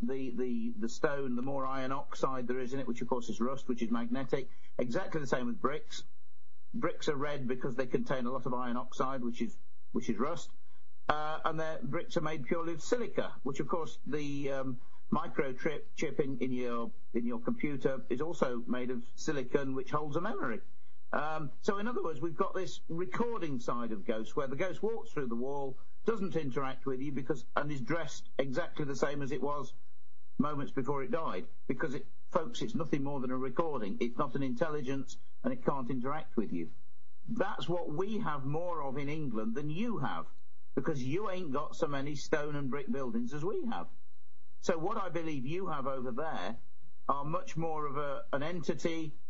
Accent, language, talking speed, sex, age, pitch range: British, English, 200 wpm, male, 50-69, 125-160 Hz